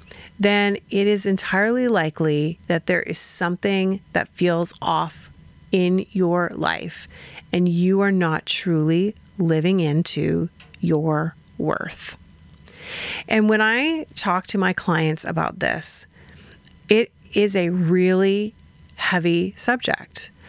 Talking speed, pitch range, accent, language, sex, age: 115 wpm, 165-210 Hz, American, English, female, 40-59